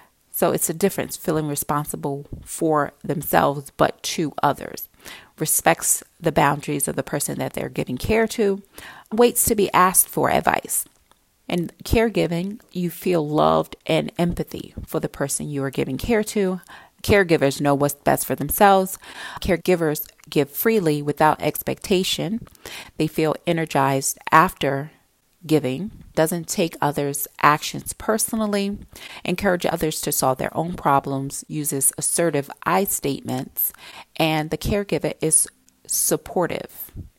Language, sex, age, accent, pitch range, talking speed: English, female, 30-49, American, 140-190 Hz, 130 wpm